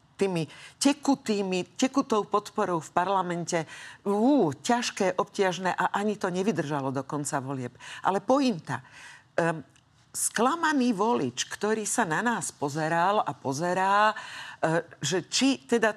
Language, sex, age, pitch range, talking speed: Slovak, female, 50-69, 160-220 Hz, 115 wpm